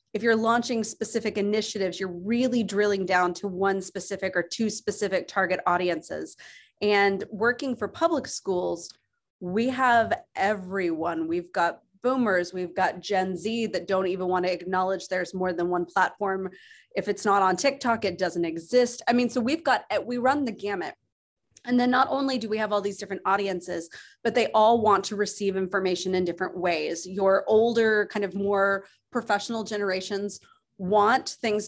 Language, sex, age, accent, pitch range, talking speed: English, female, 30-49, American, 185-220 Hz, 170 wpm